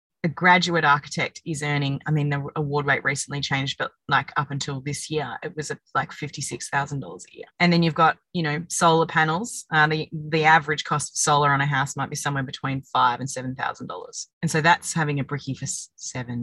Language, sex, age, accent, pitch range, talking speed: English, female, 20-39, Australian, 140-170 Hz, 210 wpm